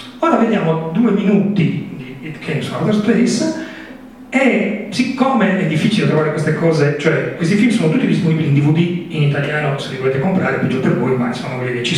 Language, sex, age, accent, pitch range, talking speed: Italian, male, 40-59, native, 150-225 Hz, 180 wpm